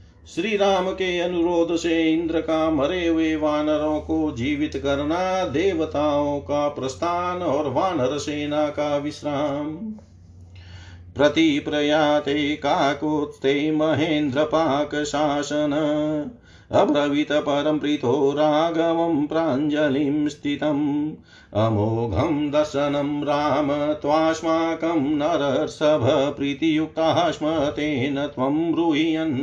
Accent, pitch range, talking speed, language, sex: native, 140-155 Hz, 80 wpm, Hindi, male